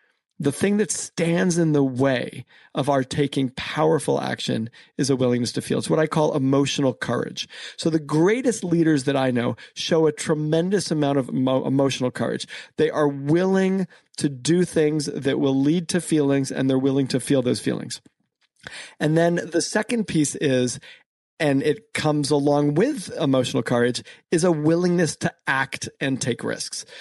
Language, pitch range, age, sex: English, 135-165 Hz, 40-59, male